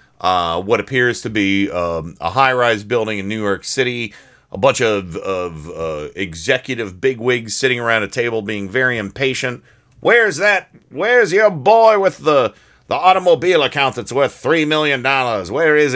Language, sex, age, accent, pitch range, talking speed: English, male, 40-59, American, 85-125 Hz, 165 wpm